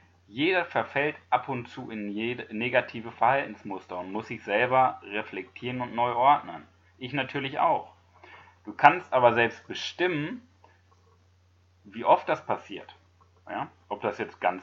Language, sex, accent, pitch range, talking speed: German, male, German, 90-135 Hz, 140 wpm